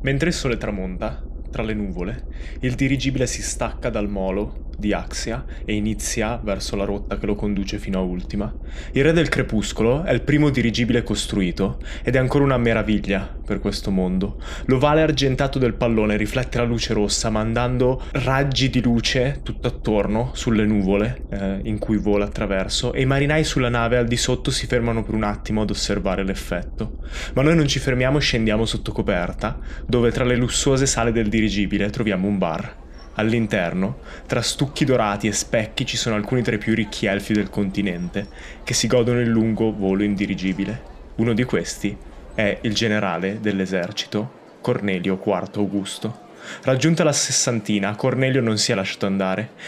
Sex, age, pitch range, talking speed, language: male, 20-39, 100-125 Hz, 170 wpm, Italian